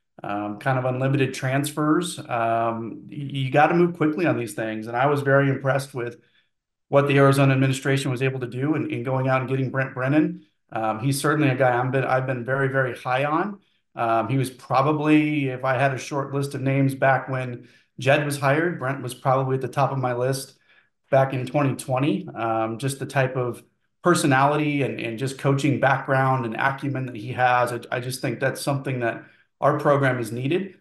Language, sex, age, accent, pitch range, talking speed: English, male, 30-49, American, 120-140 Hz, 205 wpm